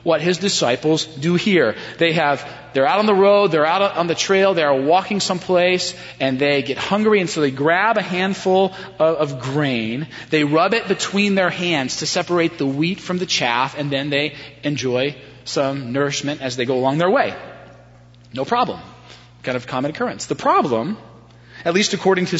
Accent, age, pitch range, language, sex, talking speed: American, 30-49, 135-185 Hz, English, male, 190 wpm